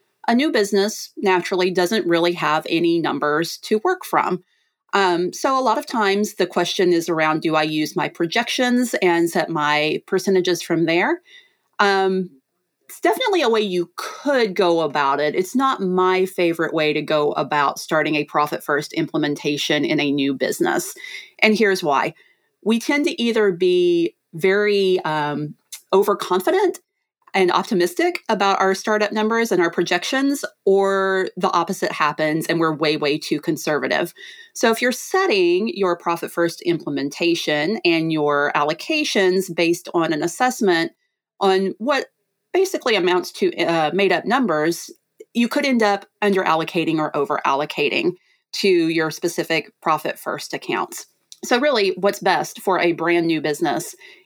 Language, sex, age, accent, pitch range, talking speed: English, female, 30-49, American, 165-235 Hz, 150 wpm